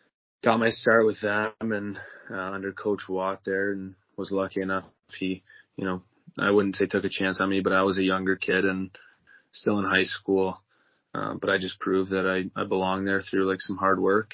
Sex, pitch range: male, 95-105 Hz